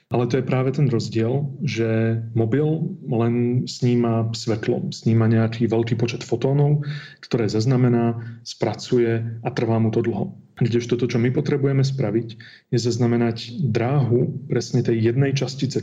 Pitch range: 115-135 Hz